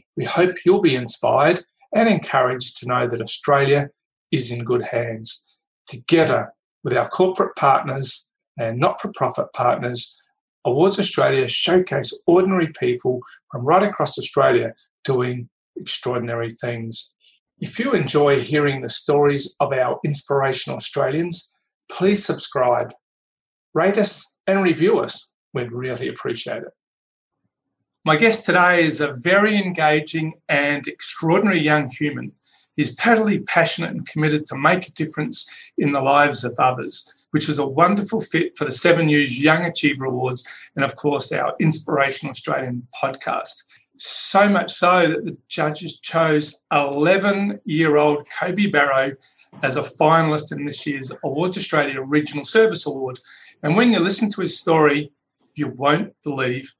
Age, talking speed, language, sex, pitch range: 40-59, 140 wpm, English, male, 135-180 Hz